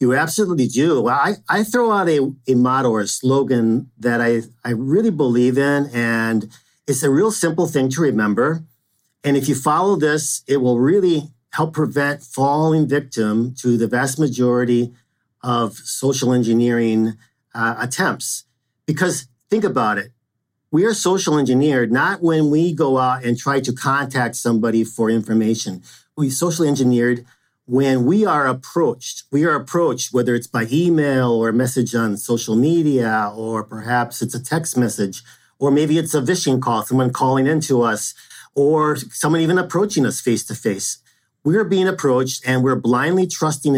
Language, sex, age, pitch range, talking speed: English, male, 50-69, 120-150 Hz, 165 wpm